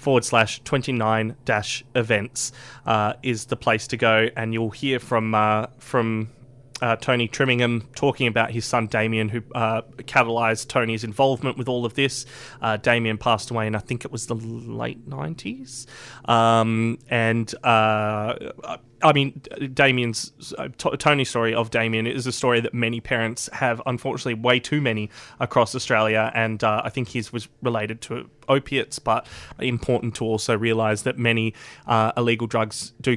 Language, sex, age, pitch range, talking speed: English, male, 20-39, 115-140 Hz, 165 wpm